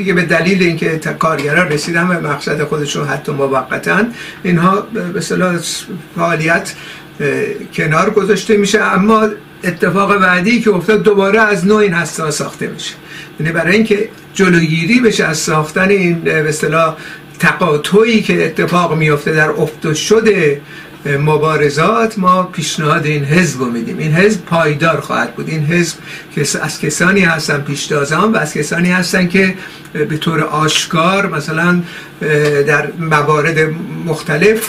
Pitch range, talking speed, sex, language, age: 155-195 Hz, 130 wpm, male, Persian, 60-79